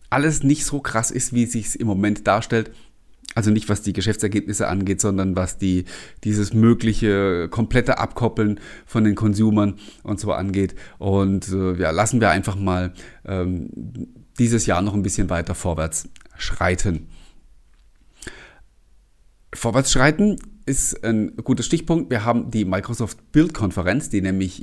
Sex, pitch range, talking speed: male, 95-135 Hz, 140 wpm